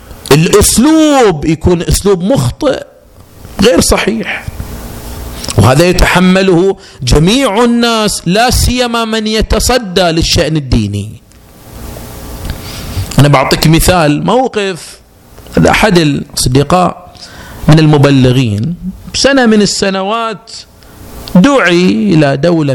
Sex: male